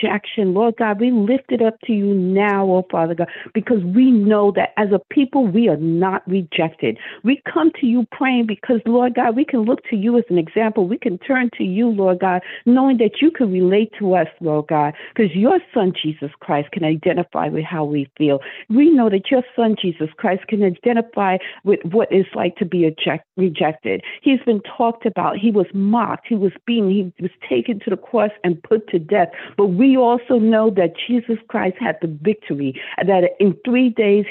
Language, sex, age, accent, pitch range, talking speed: English, female, 50-69, American, 180-235 Hz, 210 wpm